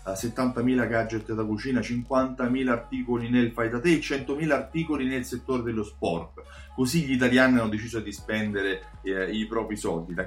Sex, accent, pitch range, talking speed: male, native, 105-135 Hz, 150 wpm